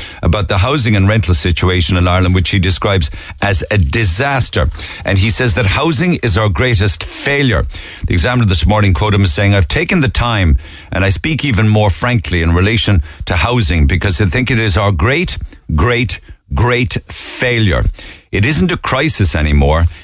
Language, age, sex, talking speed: English, 50-69, male, 180 wpm